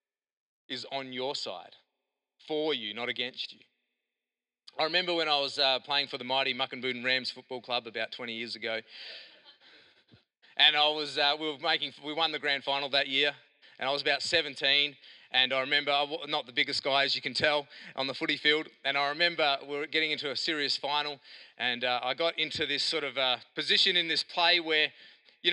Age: 30-49